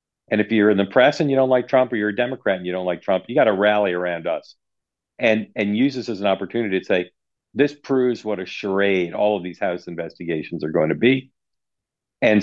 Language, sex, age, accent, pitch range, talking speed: English, male, 50-69, American, 95-110 Hz, 240 wpm